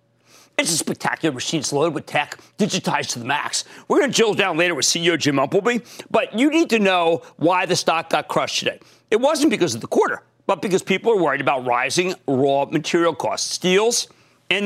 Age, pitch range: 40-59, 165-250 Hz